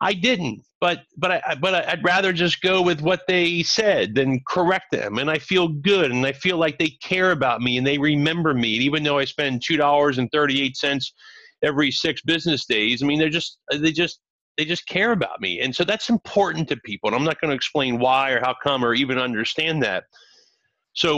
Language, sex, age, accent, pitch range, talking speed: English, male, 40-59, American, 125-160 Hz, 210 wpm